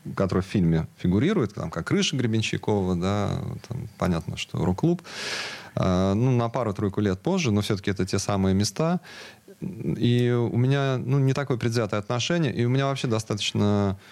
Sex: male